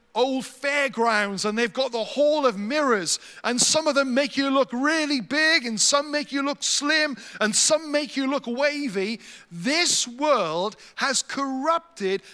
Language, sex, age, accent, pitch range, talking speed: English, male, 40-59, British, 205-285 Hz, 165 wpm